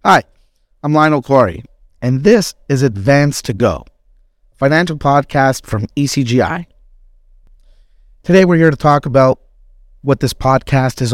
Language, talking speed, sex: English, 135 wpm, male